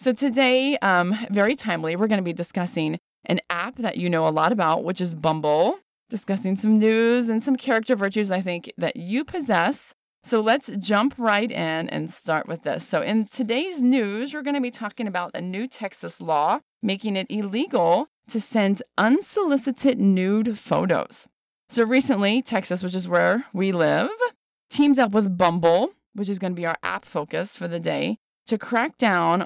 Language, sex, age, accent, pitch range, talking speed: English, female, 20-39, American, 180-240 Hz, 185 wpm